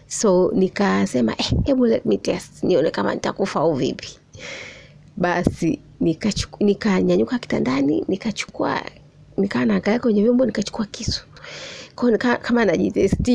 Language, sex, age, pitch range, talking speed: Swahili, female, 30-49, 175-235 Hz, 125 wpm